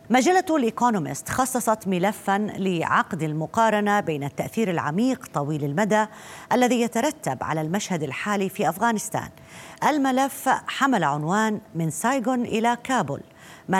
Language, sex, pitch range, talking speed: Arabic, female, 155-220 Hz, 115 wpm